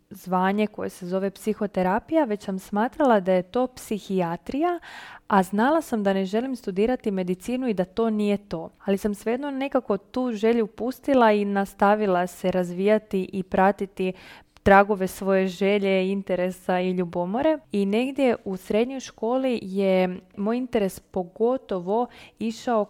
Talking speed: 140 wpm